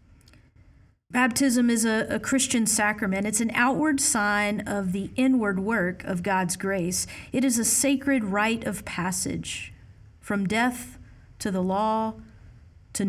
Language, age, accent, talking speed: English, 40-59, American, 140 wpm